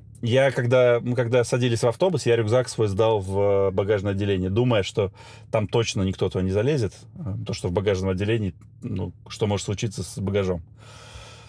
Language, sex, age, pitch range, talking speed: Russian, male, 20-39, 105-125 Hz, 170 wpm